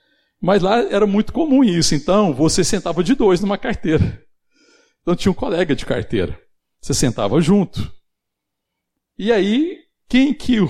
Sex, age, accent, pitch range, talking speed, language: male, 60-79, Brazilian, 110-160 Hz, 145 wpm, Portuguese